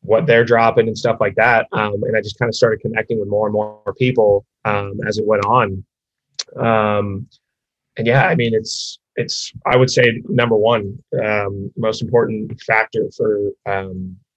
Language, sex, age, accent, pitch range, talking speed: English, male, 20-39, American, 105-125 Hz, 180 wpm